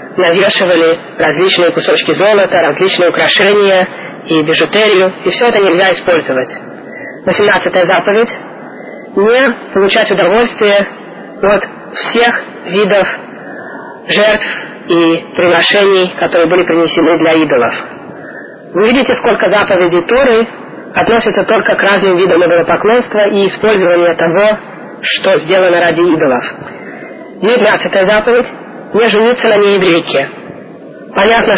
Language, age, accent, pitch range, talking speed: Russian, 30-49, native, 170-210 Hz, 105 wpm